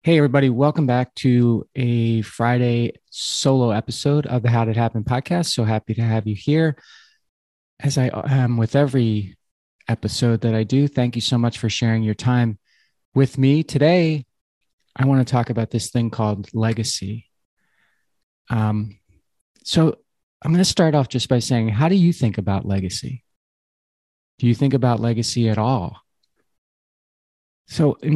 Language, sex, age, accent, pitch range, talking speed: English, male, 30-49, American, 110-135 Hz, 160 wpm